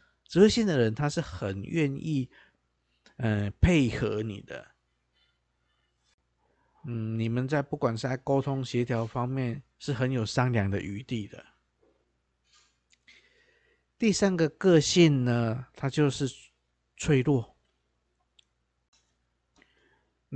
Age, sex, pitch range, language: 50-69, male, 110-145 Hz, Chinese